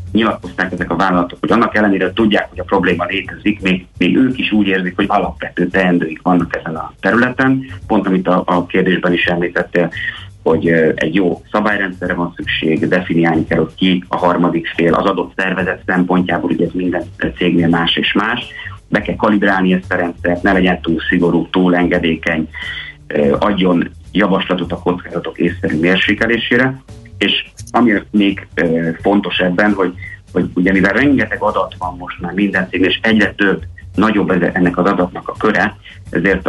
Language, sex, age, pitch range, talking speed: Hungarian, male, 30-49, 85-95 Hz, 165 wpm